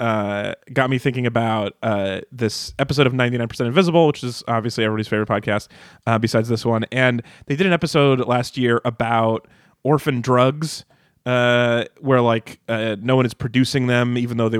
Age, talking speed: 30-49, 180 wpm